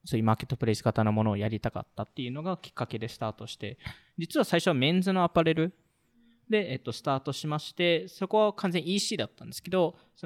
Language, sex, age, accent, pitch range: Japanese, male, 20-39, native, 120-185 Hz